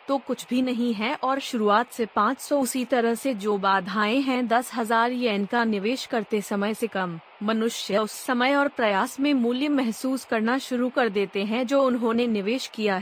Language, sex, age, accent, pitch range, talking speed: Hindi, female, 30-49, native, 210-250 Hz, 190 wpm